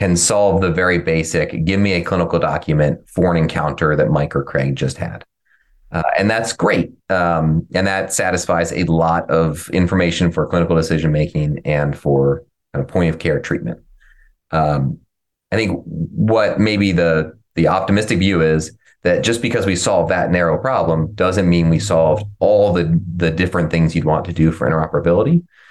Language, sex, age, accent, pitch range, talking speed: English, male, 30-49, American, 80-90 Hz, 175 wpm